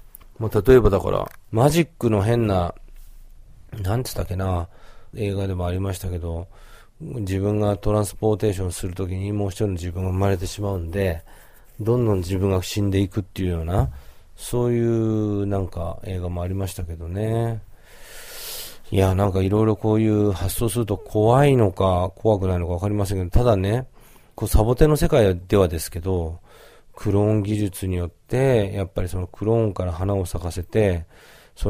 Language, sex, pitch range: Japanese, male, 95-110 Hz